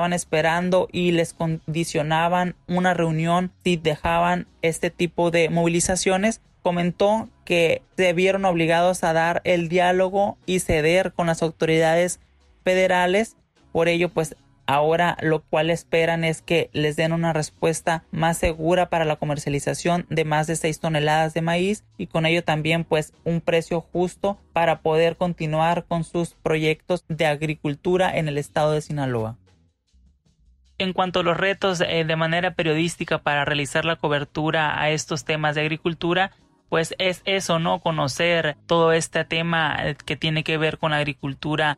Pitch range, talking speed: 155-175 Hz, 150 wpm